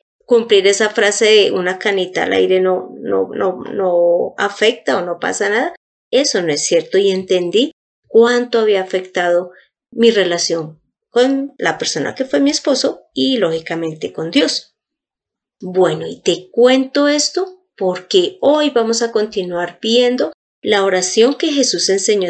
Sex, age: female, 30-49